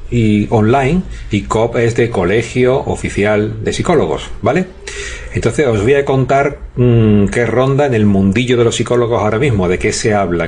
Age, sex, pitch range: 40-59, male, 100-130 Hz